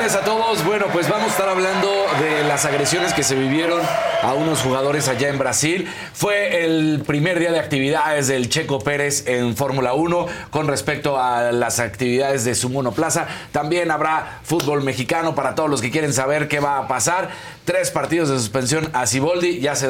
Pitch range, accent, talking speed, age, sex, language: 120-155 Hz, Mexican, 185 wpm, 40-59, male, Spanish